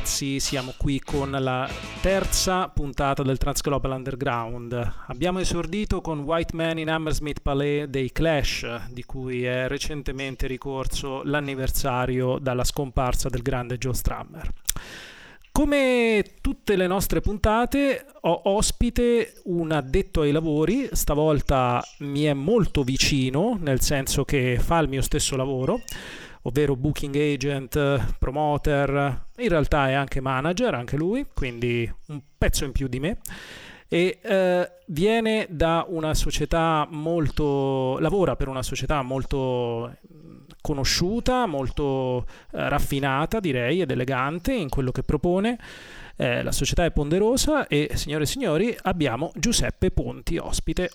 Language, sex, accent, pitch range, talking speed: Italian, male, native, 135-170 Hz, 130 wpm